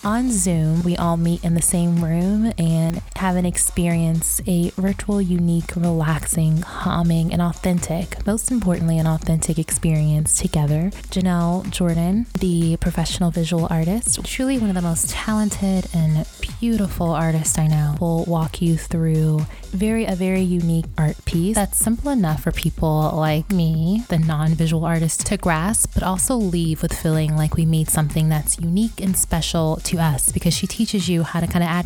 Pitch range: 160-190 Hz